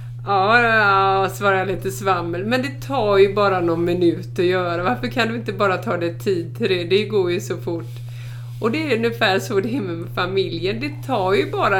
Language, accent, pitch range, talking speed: Swedish, native, 120-175 Hz, 215 wpm